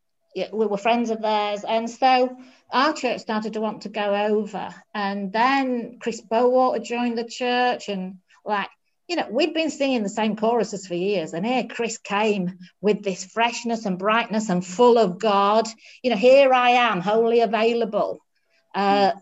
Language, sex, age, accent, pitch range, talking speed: English, female, 50-69, British, 200-245 Hz, 170 wpm